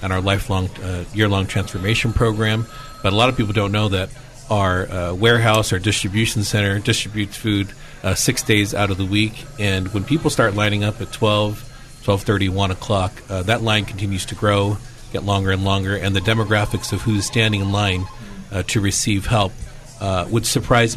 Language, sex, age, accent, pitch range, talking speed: English, male, 40-59, American, 100-120 Hz, 190 wpm